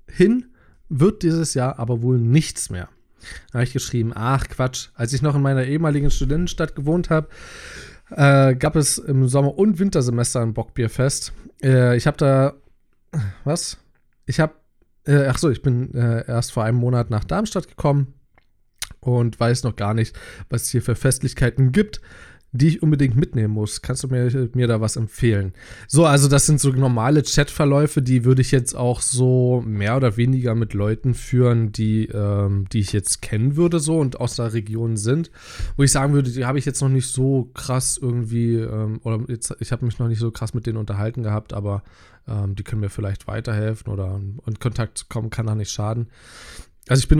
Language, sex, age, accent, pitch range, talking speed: German, male, 20-39, German, 110-140 Hz, 195 wpm